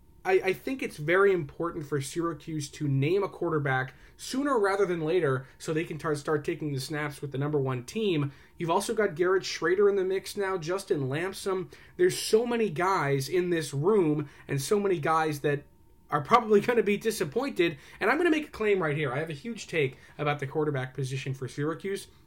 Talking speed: 205 wpm